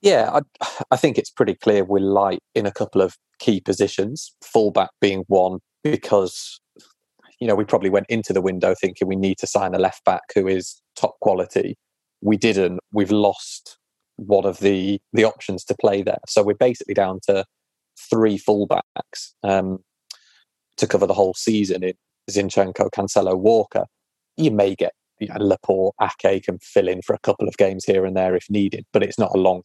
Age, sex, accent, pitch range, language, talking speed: 30-49, male, British, 95-105 Hz, English, 190 wpm